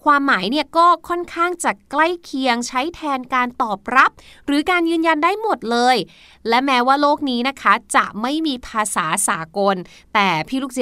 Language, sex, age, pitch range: Thai, female, 20-39, 225-305 Hz